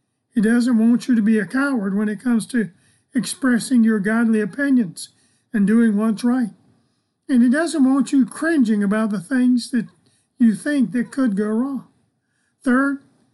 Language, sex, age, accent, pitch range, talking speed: English, male, 50-69, American, 215-260 Hz, 165 wpm